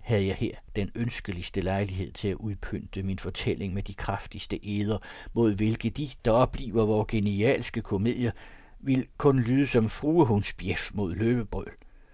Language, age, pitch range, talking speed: Danish, 60-79, 95-120 Hz, 150 wpm